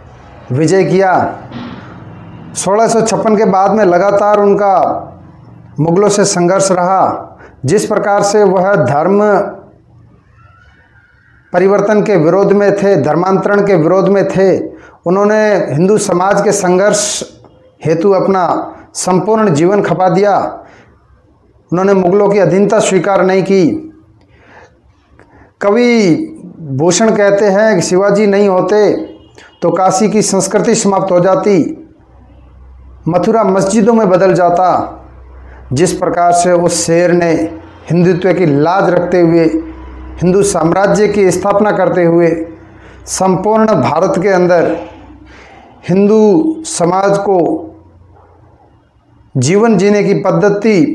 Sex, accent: male, native